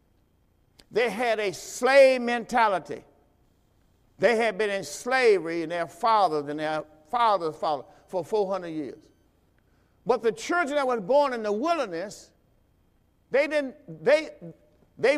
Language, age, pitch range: English, 50-69, 165-280 Hz